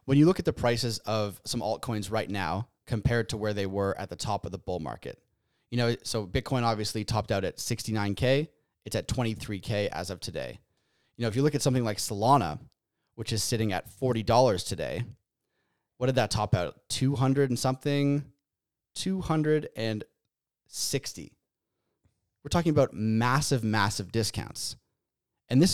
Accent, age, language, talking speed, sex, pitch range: American, 30-49, English, 165 wpm, male, 105-135 Hz